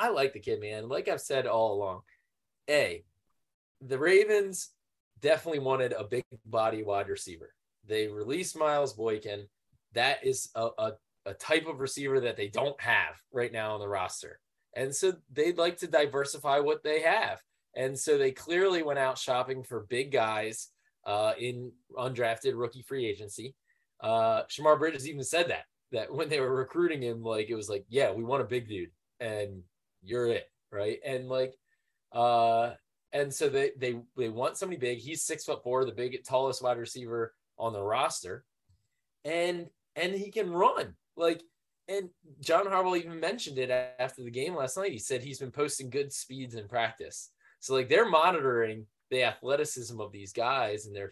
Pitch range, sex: 115-165 Hz, male